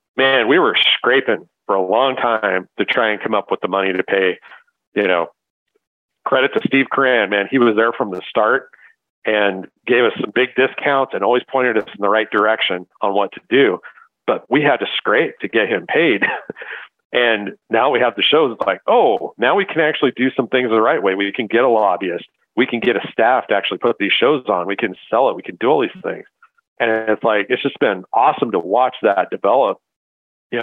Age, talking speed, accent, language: 50-69, 225 wpm, American, English